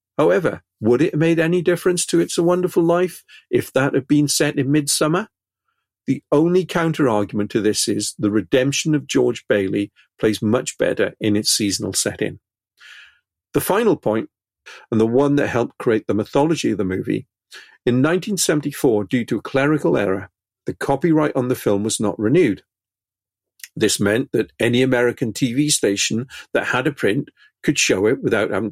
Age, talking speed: 50-69, 175 wpm